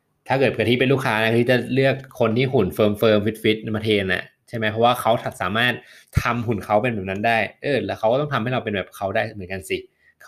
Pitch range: 100-120 Hz